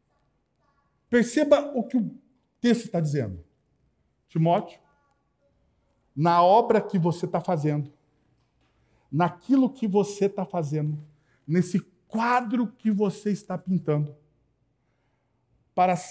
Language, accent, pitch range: Portuguese, Brazilian, 130-210 Hz